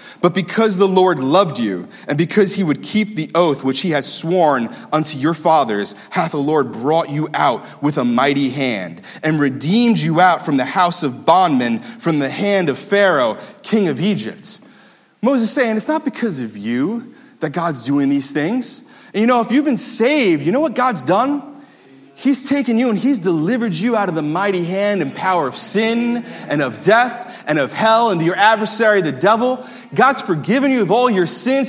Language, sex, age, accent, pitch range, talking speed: English, male, 30-49, American, 145-220 Hz, 200 wpm